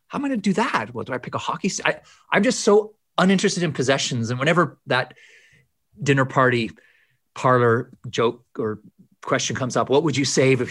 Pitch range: 120-165 Hz